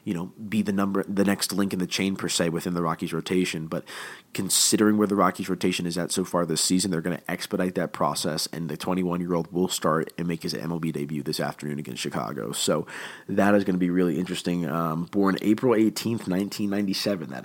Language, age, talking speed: English, 30-49, 235 wpm